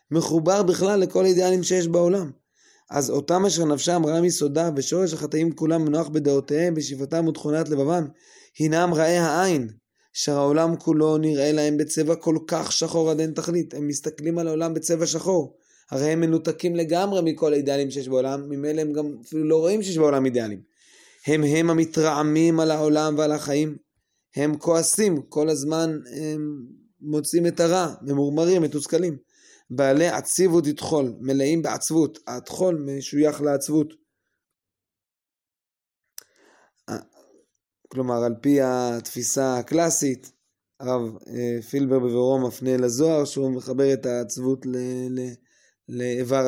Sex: male